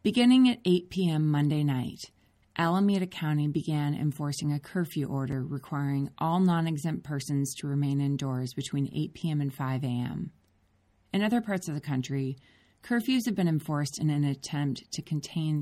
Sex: female